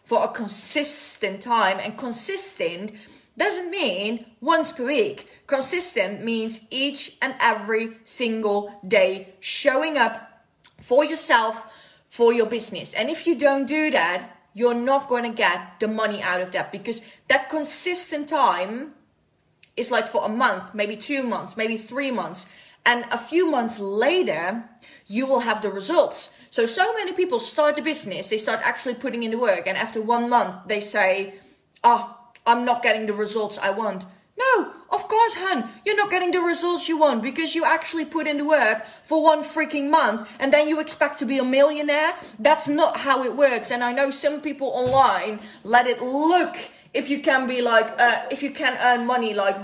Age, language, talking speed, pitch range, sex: 20-39, Dutch, 180 wpm, 220-300 Hz, female